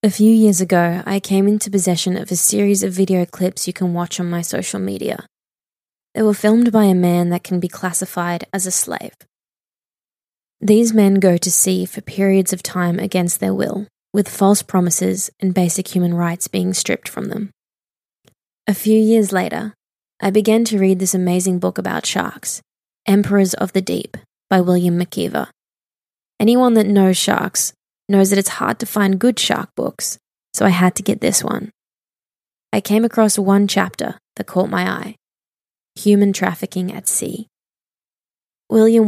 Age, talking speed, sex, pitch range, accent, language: 20-39, 170 wpm, female, 185-210 Hz, Australian, English